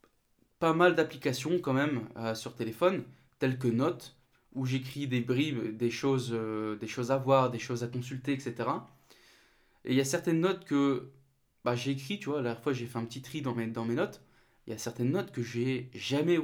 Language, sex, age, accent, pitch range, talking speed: French, male, 20-39, French, 120-155 Hz, 220 wpm